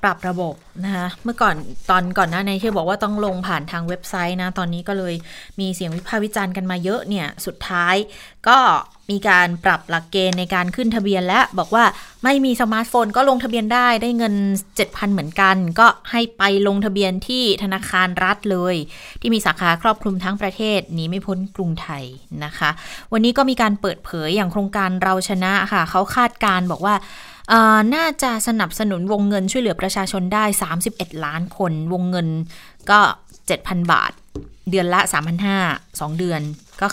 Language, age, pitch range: Thai, 20-39, 175-215 Hz